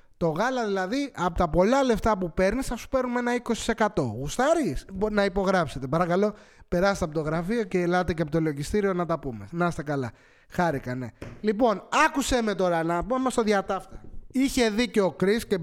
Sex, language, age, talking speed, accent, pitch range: male, English, 20-39, 190 wpm, Greek, 175-235 Hz